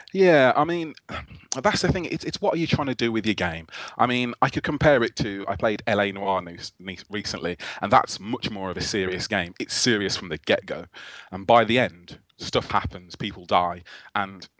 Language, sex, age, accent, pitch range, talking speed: English, male, 30-49, British, 95-110 Hz, 210 wpm